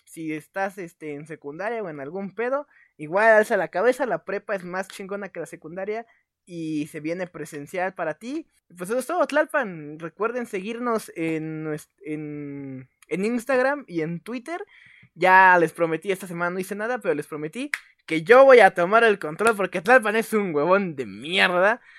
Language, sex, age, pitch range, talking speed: Spanish, male, 20-39, 160-225 Hz, 180 wpm